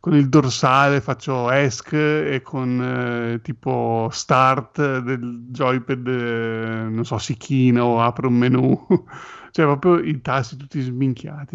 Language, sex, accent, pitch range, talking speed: Italian, male, native, 120-145 Hz, 135 wpm